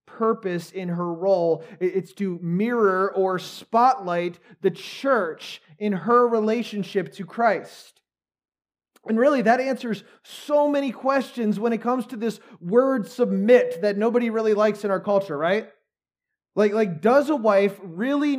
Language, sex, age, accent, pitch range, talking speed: English, male, 30-49, American, 190-245 Hz, 145 wpm